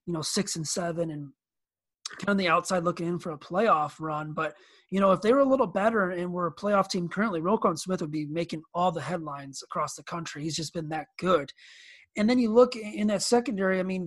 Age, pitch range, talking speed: 30-49, 165-210 Hz, 245 wpm